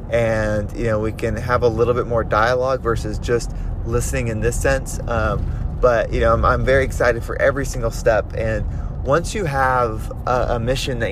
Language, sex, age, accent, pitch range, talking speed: English, male, 20-39, American, 110-125 Hz, 200 wpm